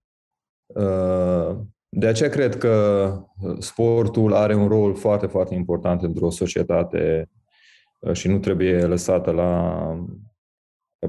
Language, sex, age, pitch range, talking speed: Romanian, male, 20-39, 85-100 Hz, 105 wpm